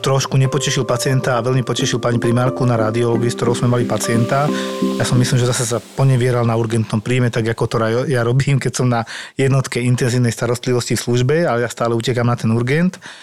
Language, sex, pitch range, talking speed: Slovak, male, 120-145 Hz, 210 wpm